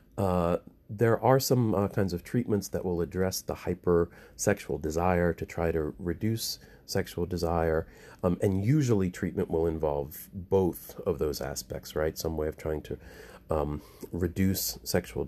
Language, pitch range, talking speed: English, 85-110 Hz, 155 wpm